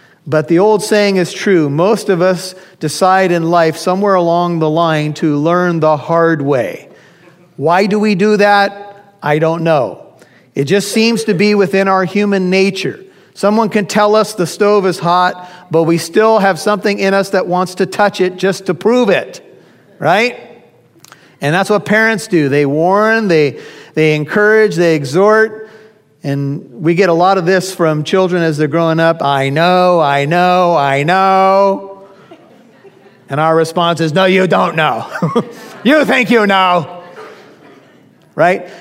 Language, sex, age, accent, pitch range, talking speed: English, male, 50-69, American, 155-200 Hz, 165 wpm